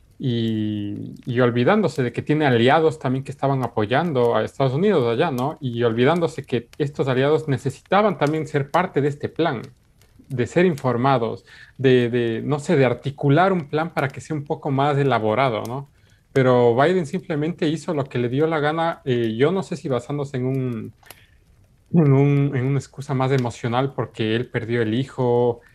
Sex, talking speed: male, 175 wpm